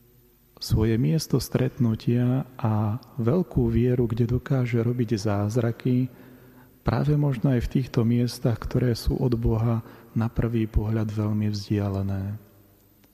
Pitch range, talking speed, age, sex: 115-130 Hz, 115 wpm, 40-59, male